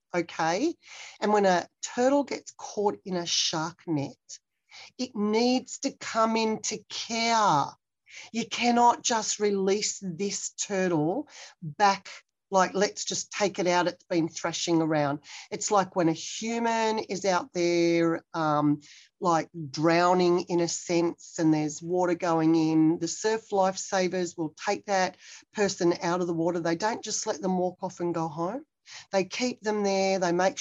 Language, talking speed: English, 155 wpm